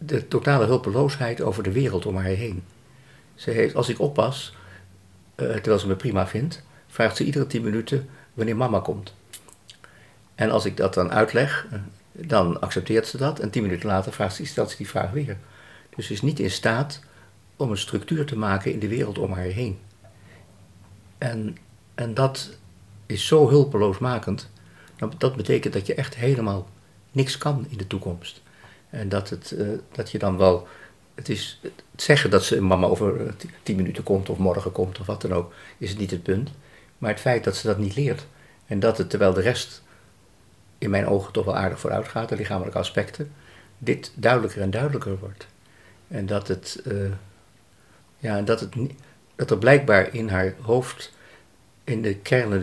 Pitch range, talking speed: 95-125 Hz, 180 wpm